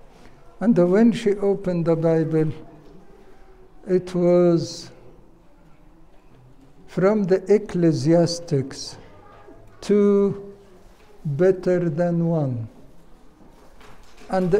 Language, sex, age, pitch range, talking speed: English, male, 60-79, 165-205 Hz, 65 wpm